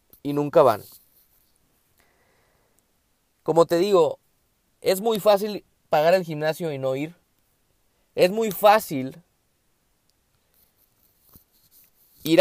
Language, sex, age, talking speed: Spanish, male, 20-39, 90 wpm